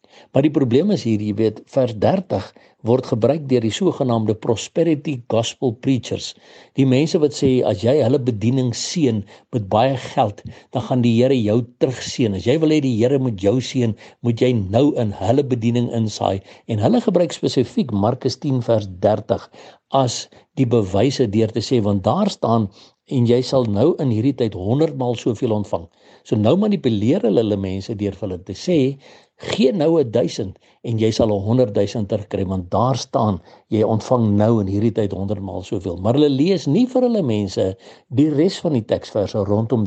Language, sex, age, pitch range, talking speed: English, male, 60-79, 105-135 Hz, 185 wpm